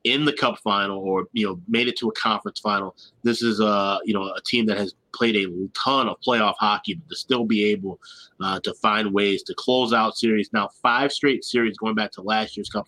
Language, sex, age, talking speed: English, male, 30-49, 240 wpm